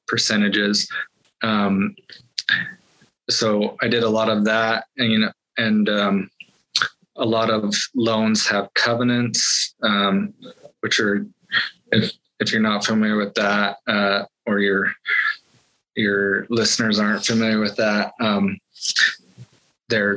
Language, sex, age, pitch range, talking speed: English, male, 20-39, 100-115 Hz, 120 wpm